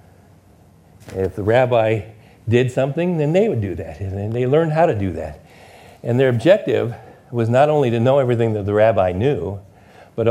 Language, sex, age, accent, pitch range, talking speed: English, male, 60-79, American, 95-115 Hz, 180 wpm